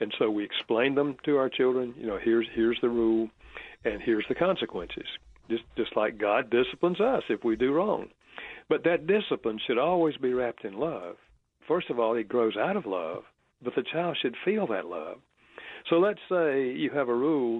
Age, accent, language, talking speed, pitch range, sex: 60-79, American, English, 200 wpm, 115-170 Hz, male